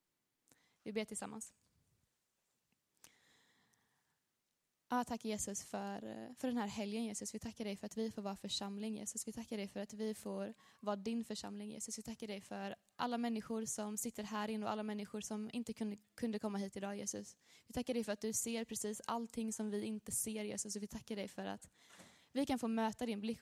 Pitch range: 205-230 Hz